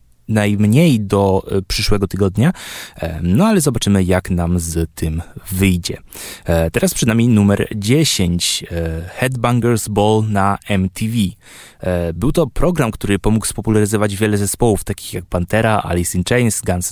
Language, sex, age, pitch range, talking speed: Polish, male, 20-39, 95-110 Hz, 130 wpm